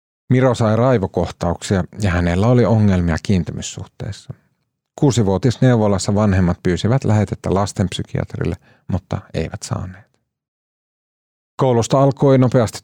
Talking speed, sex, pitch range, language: 90 wpm, male, 90-120 Hz, Finnish